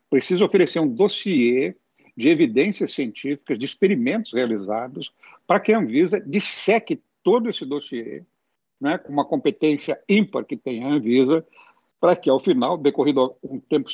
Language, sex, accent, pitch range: Portuguese, male, Brazilian, 130-180 Hz